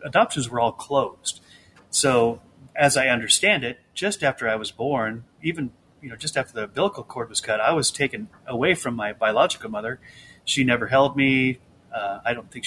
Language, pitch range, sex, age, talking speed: English, 115-145 Hz, male, 30-49, 190 wpm